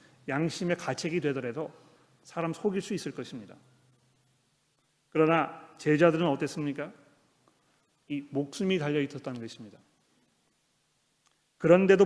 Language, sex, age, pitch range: Korean, male, 40-59, 140-170 Hz